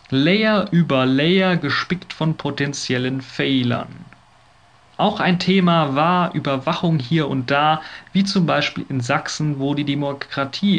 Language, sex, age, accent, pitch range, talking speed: German, male, 40-59, German, 140-175 Hz, 130 wpm